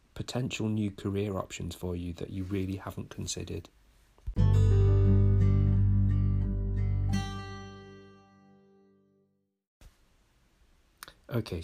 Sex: male